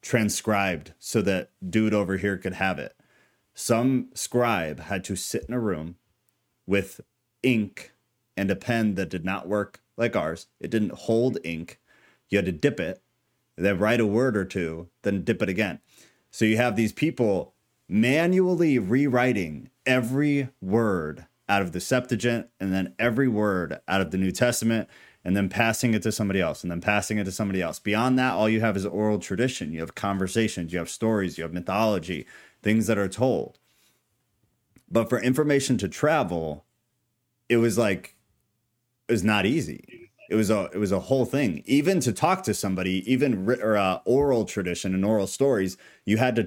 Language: English